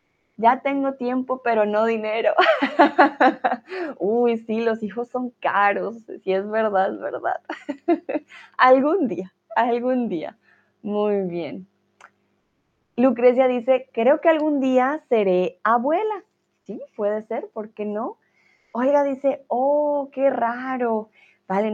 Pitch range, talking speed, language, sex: 190-250 Hz, 120 wpm, Spanish, female